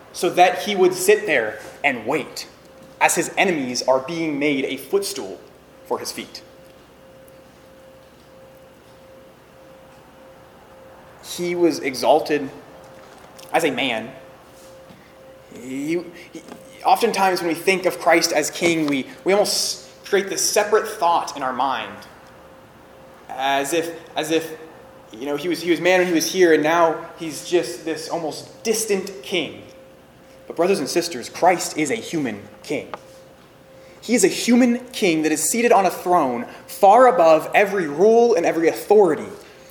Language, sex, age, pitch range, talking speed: English, male, 20-39, 160-205 Hz, 145 wpm